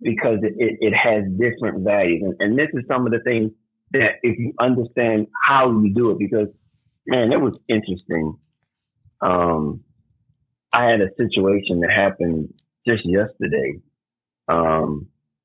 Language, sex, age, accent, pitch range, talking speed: English, male, 30-49, American, 80-110 Hz, 150 wpm